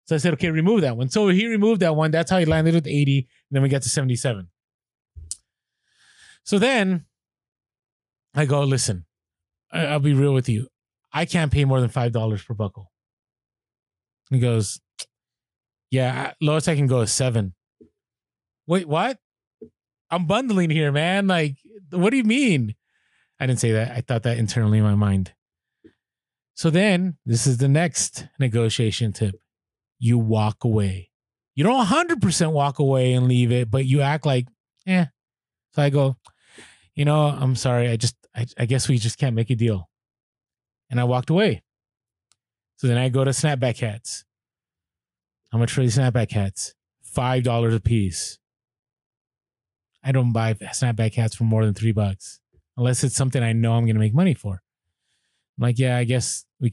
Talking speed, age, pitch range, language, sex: 170 wpm, 30-49, 115-145 Hz, English, male